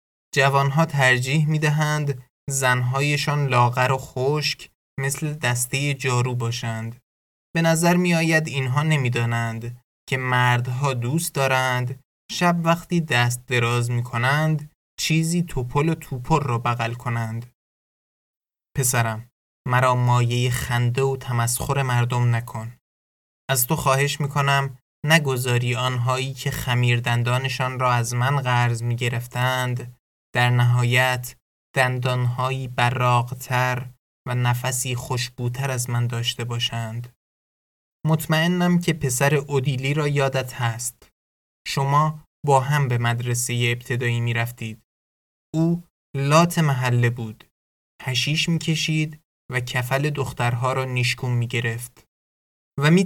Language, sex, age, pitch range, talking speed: Persian, male, 20-39, 120-140 Hz, 110 wpm